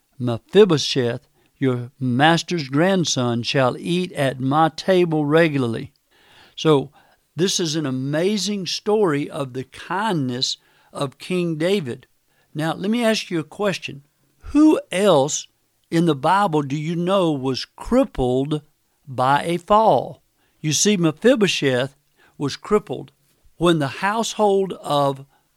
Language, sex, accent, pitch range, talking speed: English, male, American, 140-180 Hz, 120 wpm